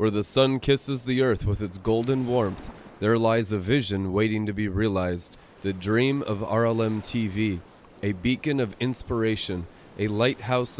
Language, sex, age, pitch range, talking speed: English, male, 30-49, 105-130 Hz, 160 wpm